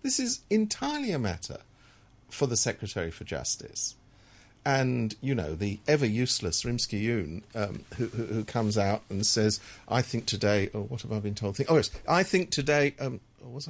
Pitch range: 105-140 Hz